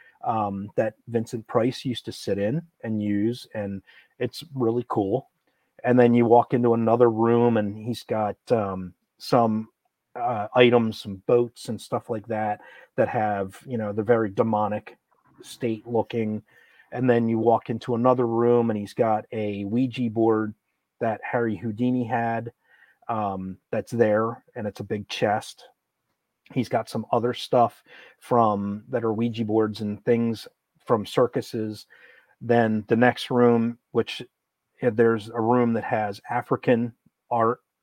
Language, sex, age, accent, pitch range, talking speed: English, male, 30-49, American, 110-120 Hz, 150 wpm